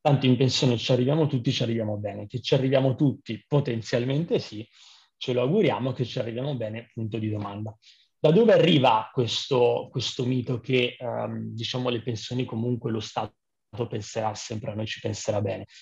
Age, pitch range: 30-49, 125-160 Hz